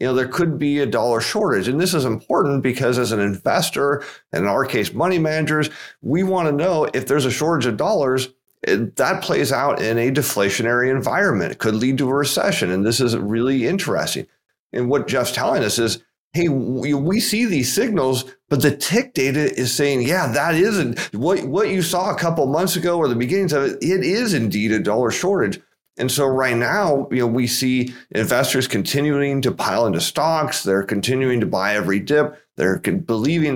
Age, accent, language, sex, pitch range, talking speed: 40-59, American, English, male, 120-150 Hz, 200 wpm